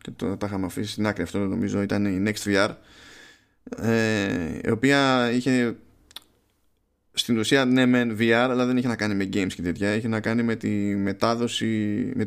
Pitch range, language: 100-125 Hz, Greek